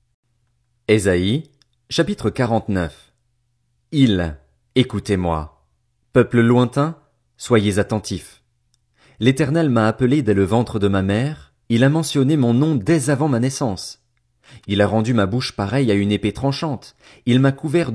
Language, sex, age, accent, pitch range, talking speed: French, male, 30-49, French, 100-130 Hz, 135 wpm